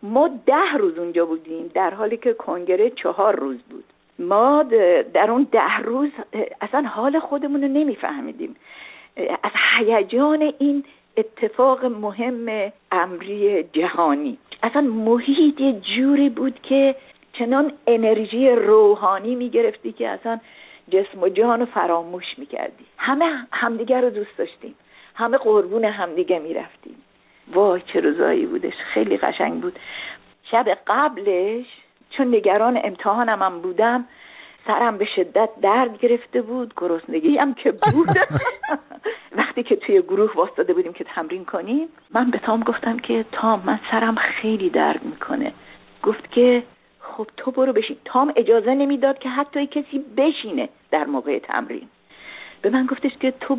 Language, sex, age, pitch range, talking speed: Persian, female, 50-69, 220-295 Hz, 135 wpm